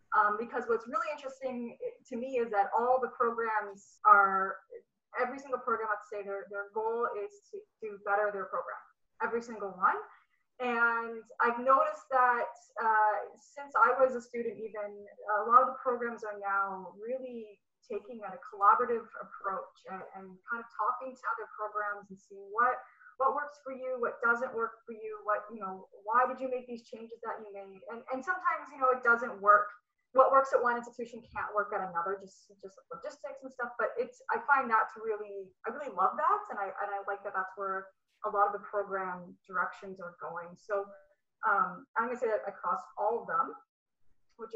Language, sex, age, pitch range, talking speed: English, female, 20-39, 205-265 Hz, 195 wpm